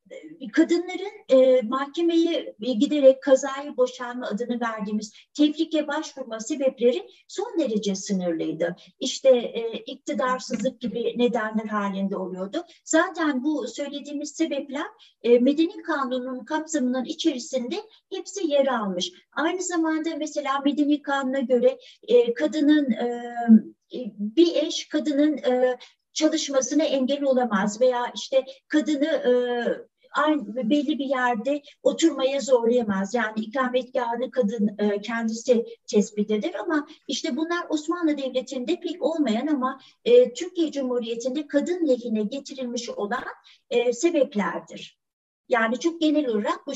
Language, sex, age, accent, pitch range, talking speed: Turkish, female, 60-79, native, 240-305 Hz, 110 wpm